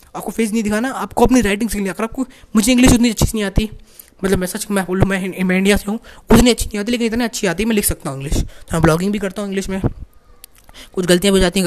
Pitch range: 170-215 Hz